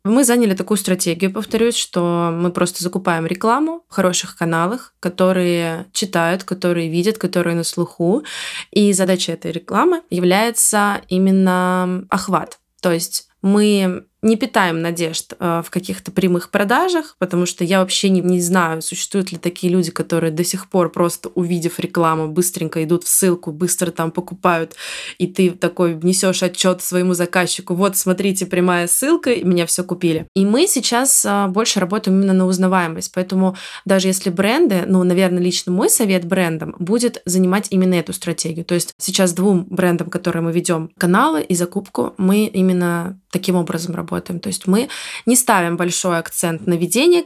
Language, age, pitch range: Russian, 20-39, 175-195 Hz